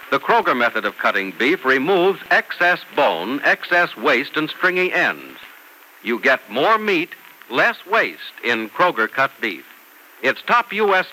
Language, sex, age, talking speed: English, male, 60-79, 145 wpm